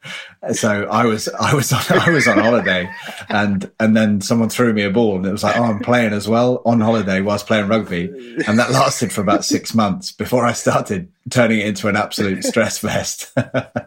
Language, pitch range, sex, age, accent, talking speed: English, 95-110 Hz, male, 30-49, British, 210 wpm